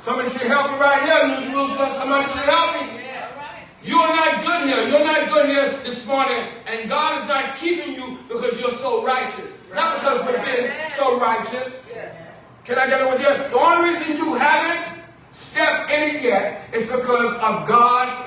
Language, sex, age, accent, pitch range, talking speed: English, male, 40-59, American, 245-305 Hz, 175 wpm